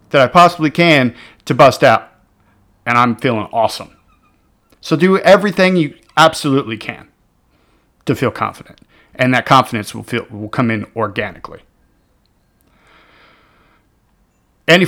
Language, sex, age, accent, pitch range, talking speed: English, male, 40-59, American, 105-145 Hz, 120 wpm